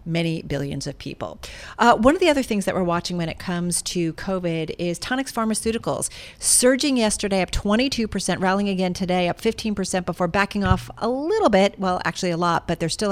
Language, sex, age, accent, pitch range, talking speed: English, female, 40-59, American, 175-210 Hz, 195 wpm